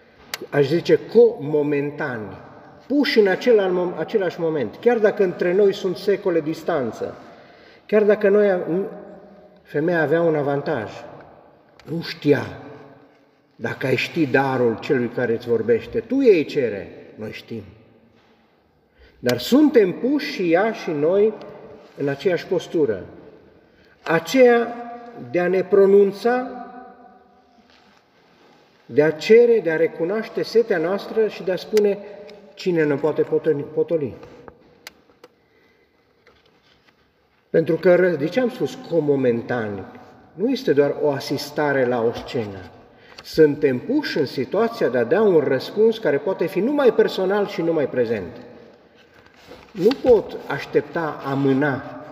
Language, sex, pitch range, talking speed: Romanian, male, 145-220 Hz, 115 wpm